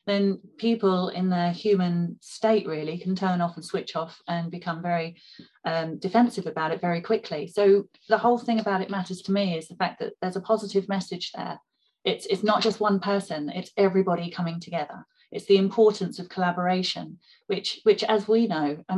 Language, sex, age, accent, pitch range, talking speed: English, female, 30-49, British, 175-210 Hz, 195 wpm